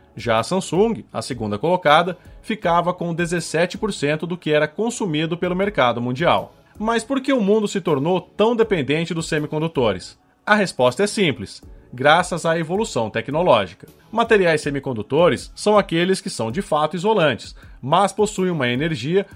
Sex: male